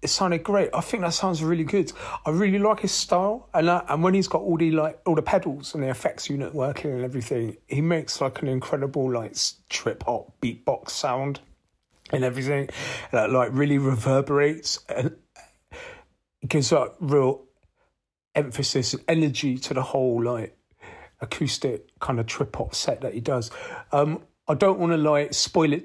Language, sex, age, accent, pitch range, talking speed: English, male, 40-59, British, 120-155 Hz, 180 wpm